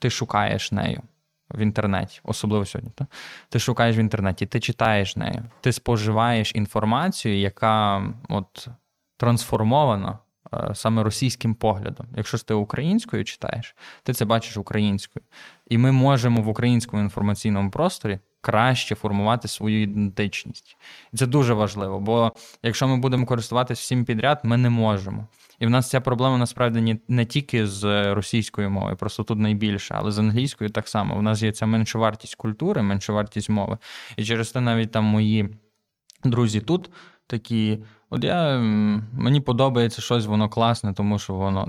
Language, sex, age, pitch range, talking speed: Ukrainian, male, 20-39, 105-120 Hz, 155 wpm